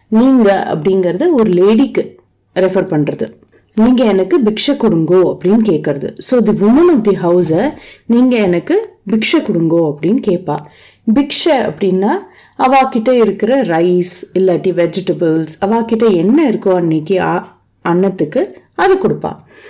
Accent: native